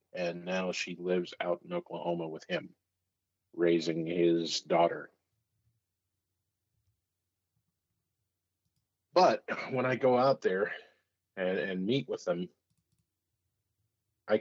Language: English